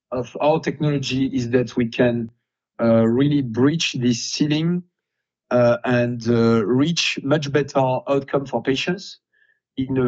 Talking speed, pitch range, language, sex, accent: 135 wpm, 120-150 Hz, English, male, French